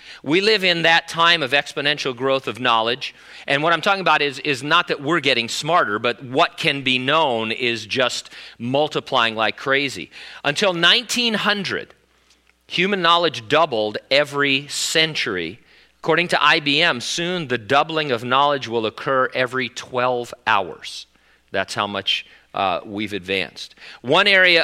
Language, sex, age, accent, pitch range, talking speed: English, male, 40-59, American, 120-145 Hz, 145 wpm